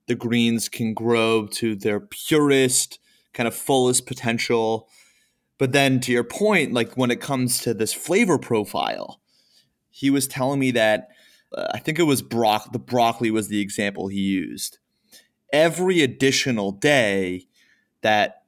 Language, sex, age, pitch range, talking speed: English, male, 30-49, 110-135 Hz, 145 wpm